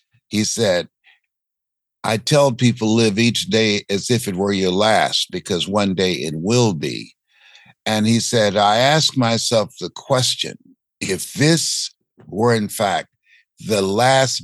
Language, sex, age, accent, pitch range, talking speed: English, male, 60-79, American, 110-145 Hz, 145 wpm